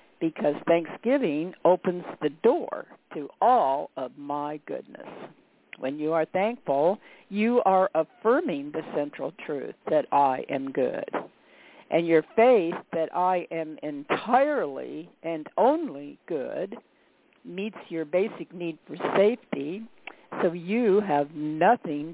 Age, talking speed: 60-79, 120 wpm